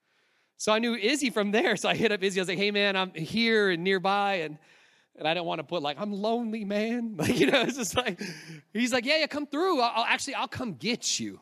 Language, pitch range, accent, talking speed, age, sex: English, 165-215 Hz, American, 260 wpm, 30-49, male